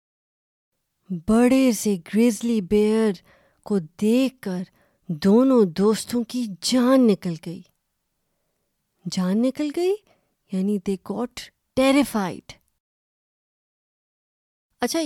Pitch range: 185-235 Hz